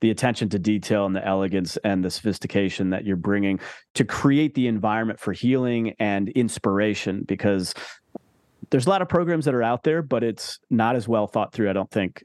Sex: male